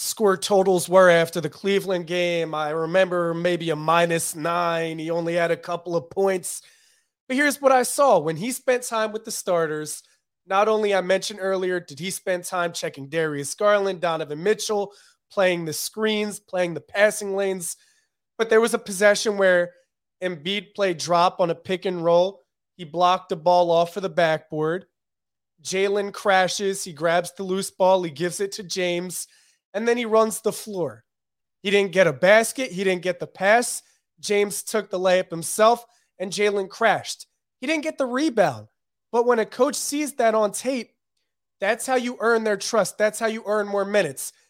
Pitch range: 175-220 Hz